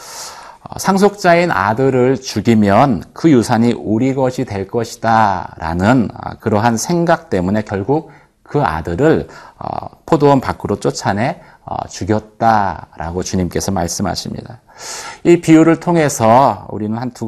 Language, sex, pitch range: Korean, male, 105-145 Hz